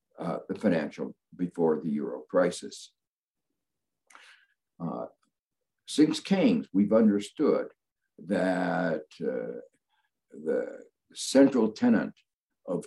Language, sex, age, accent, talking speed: English, male, 60-79, American, 85 wpm